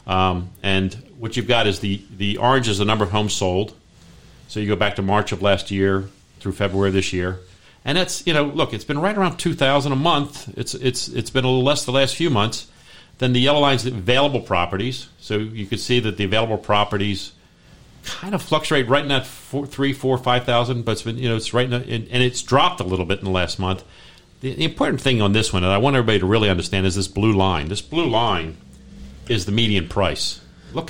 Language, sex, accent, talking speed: English, male, American, 245 wpm